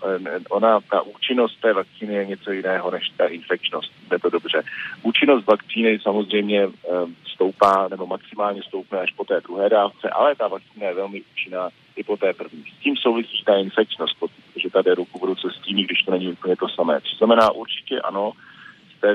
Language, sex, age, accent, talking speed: Czech, male, 40-59, native, 185 wpm